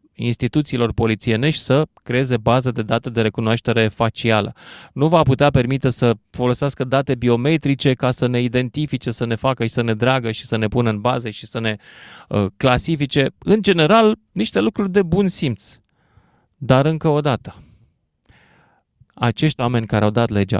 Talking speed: 165 wpm